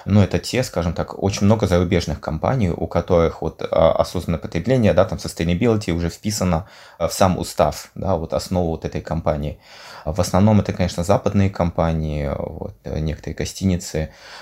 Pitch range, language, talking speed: 80-95 Hz, Russian, 155 wpm